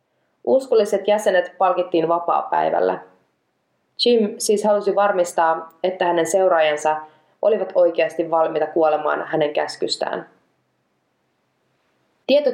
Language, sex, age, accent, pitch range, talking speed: Finnish, female, 20-39, native, 155-195 Hz, 85 wpm